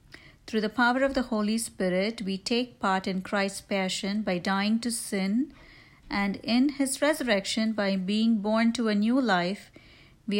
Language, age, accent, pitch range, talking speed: English, 50-69, Indian, 190-235 Hz, 165 wpm